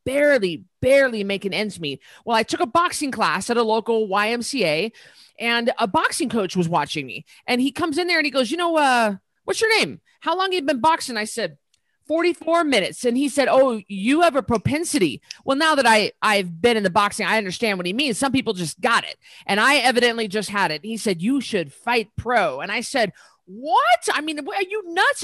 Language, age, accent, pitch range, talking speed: English, 30-49, American, 205-270 Hz, 225 wpm